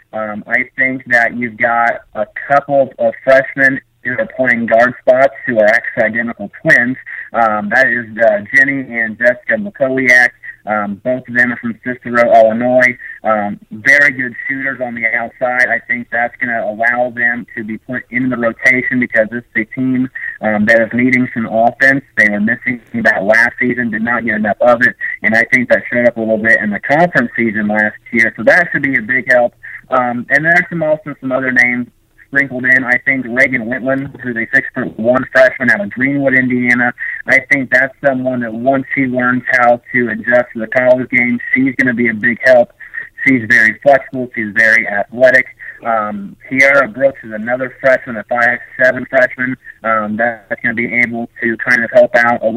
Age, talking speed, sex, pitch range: 30-49, 195 wpm, male, 115-135 Hz